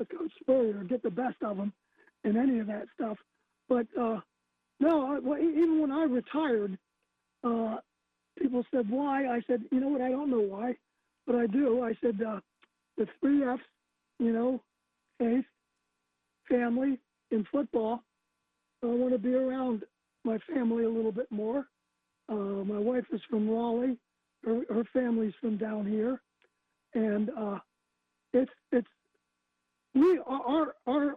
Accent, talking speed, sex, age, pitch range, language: American, 145 wpm, male, 50-69, 215-265 Hz, English